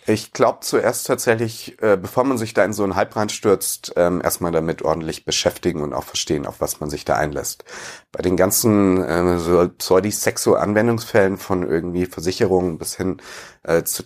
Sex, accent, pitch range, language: male, German, 90-110 Hz, German